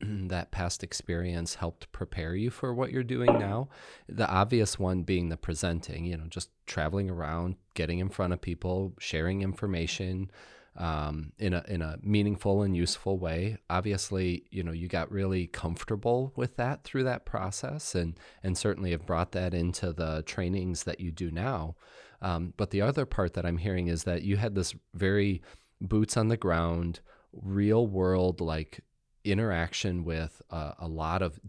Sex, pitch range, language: male, 85-105 Hz, English